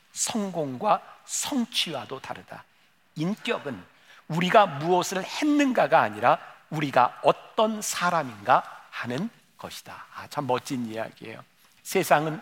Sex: male